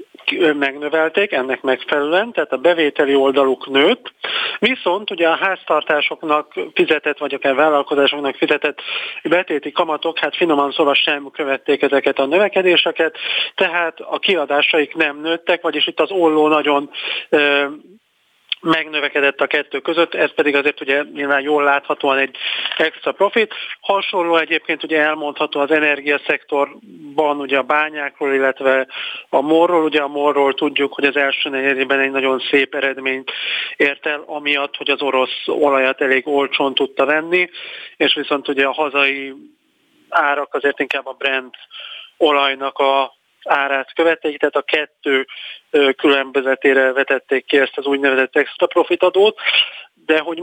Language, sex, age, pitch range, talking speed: Hungarian, male, 40-59, 140-160 Hz, 135 wpm